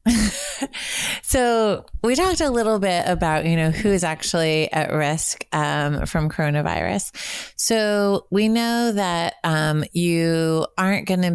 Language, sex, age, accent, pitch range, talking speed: English, female, 30-49, American, 150-180 Hz, 135 wpm